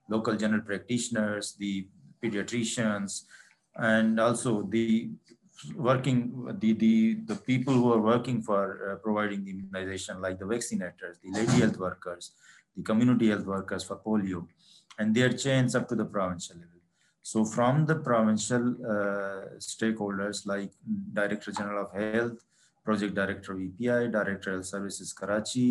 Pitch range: 105-120 Hz